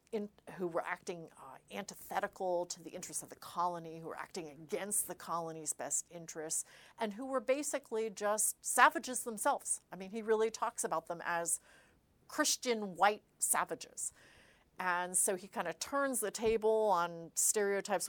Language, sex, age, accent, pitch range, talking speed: English, female, 40-59, American, 170-225 Hz, 155 wpm